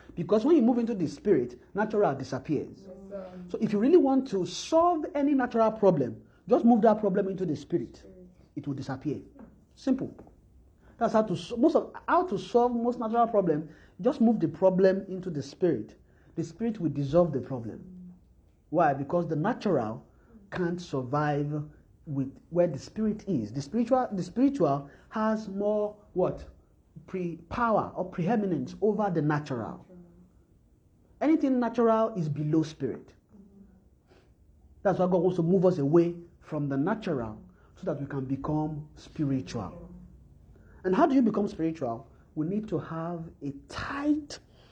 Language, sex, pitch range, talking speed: English, male, 140-210 Hz, 150 wpm